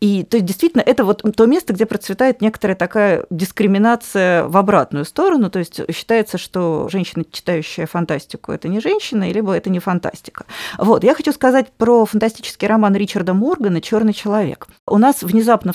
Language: Russian